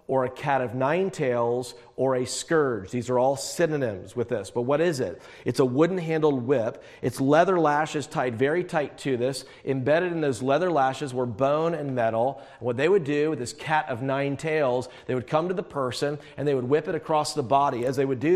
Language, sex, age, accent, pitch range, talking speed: English, male, 40-59, American, 135-185 Hz, 225 wpm